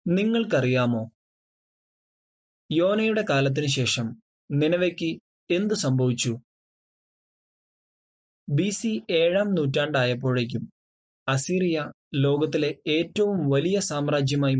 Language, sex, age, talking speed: Malayalam, male, 20-39, 60 wpm